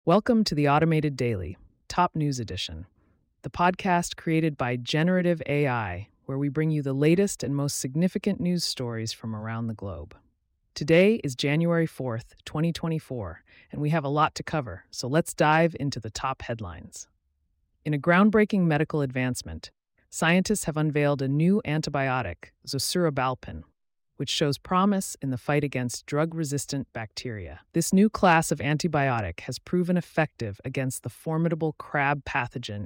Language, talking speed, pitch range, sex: English, 150 wpm, 115-160 Hz, female